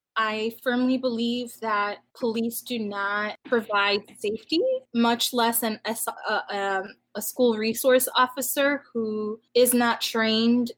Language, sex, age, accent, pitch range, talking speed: English, female, 20-39, American, 215-245 Hz, 130 wpm